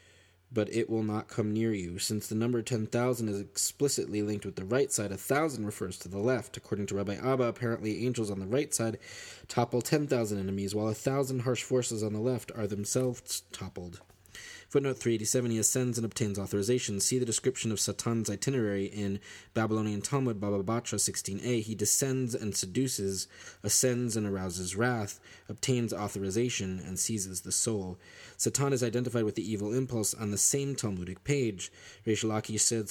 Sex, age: male, 20-39